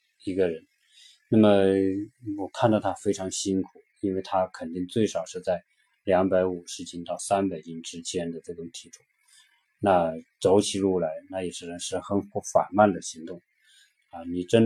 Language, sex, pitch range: Chinese, male, 95-110 Hz